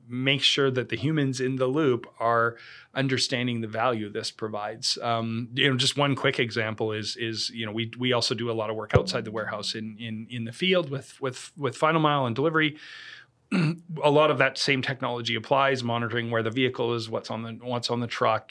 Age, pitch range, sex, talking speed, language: 40-59, 115-135 Hz, male, 215 wpm, English